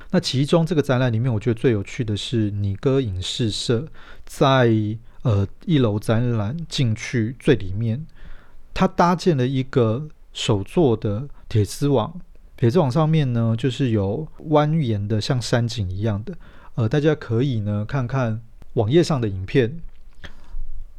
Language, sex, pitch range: Chinese, male, 105-140 Hz